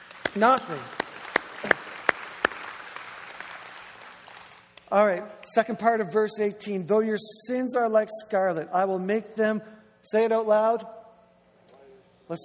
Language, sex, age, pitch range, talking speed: English, male, 50-69, 165-220 Hz, 110 wpm